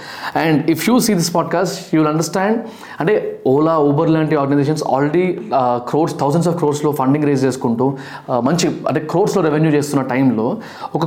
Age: 20-39